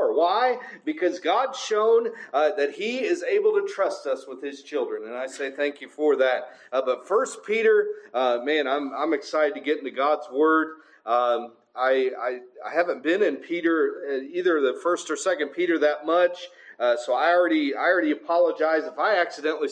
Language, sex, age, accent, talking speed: English, male, 40-59, American, 190 wpm